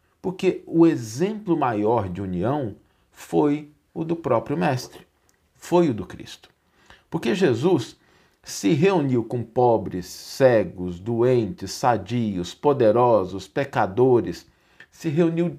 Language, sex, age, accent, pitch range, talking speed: Portuguese, male, 50-69, Brazilian, 105-145 Hz, 110 wpm